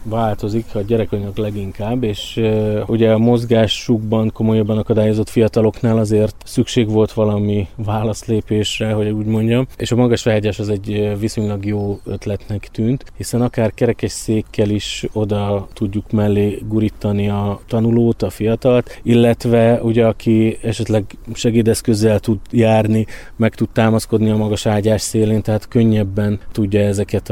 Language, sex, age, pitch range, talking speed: Hungarian, male, 20-39, 105-115 Hz, 135 wpm